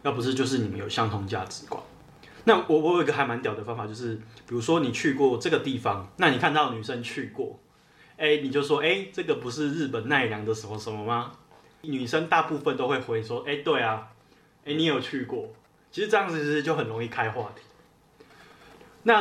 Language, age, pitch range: Chinese, 20-39, 115-160 Hz